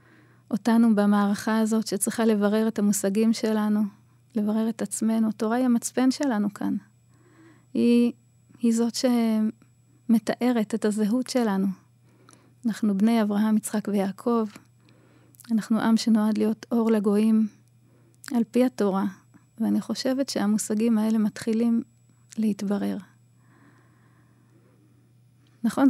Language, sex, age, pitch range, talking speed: Hebrew, female, 20-39, 195-225 Hz, 100 wpm